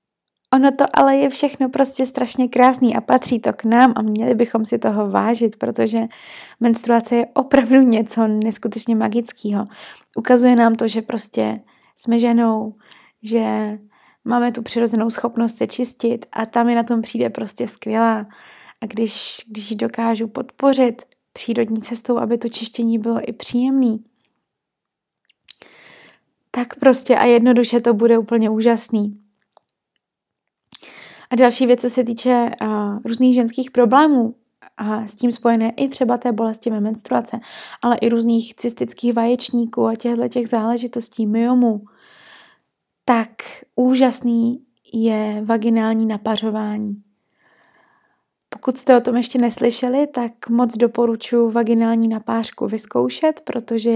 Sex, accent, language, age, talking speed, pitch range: female, native, Czech, 20-39, 130 wpm, 225-245 Hz